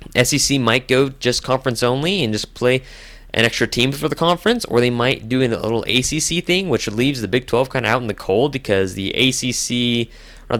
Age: 20-39